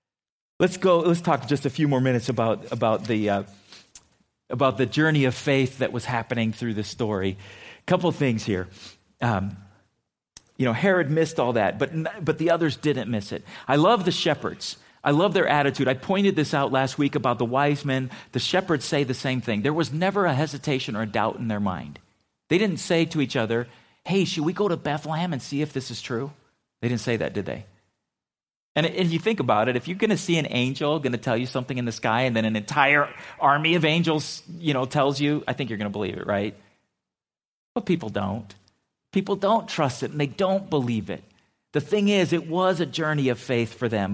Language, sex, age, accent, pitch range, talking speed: English, male, 40-59, American, 115-165 Hz, 225 wpm